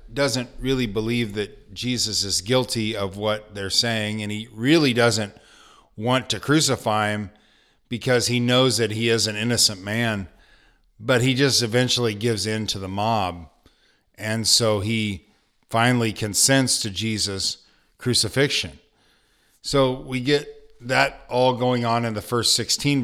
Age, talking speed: 40-59, 145 wpm